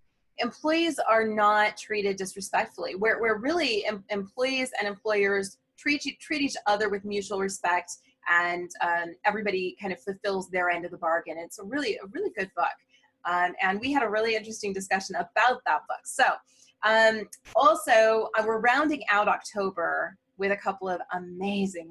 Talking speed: 165 wpm